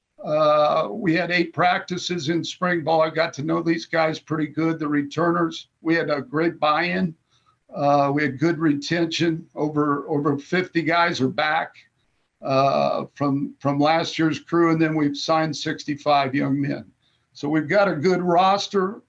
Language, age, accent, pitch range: English, 60-79, American, 150-180 Hz